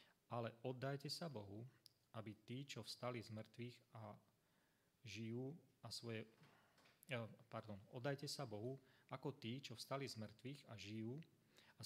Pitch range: 105-125 Hz